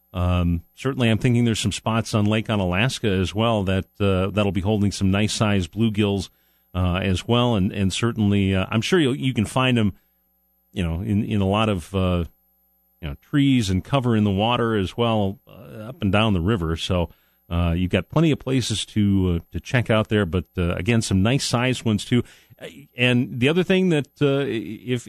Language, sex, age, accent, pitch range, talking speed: English, male, 40-59, American, 95-115 Hz, 210 wpm